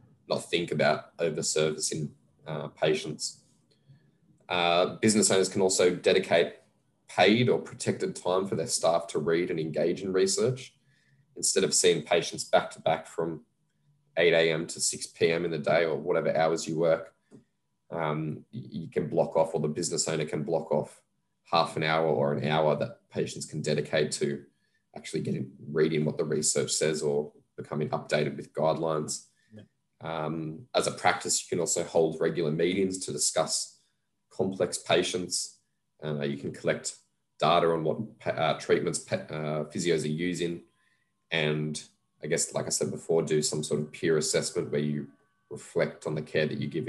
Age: 20-39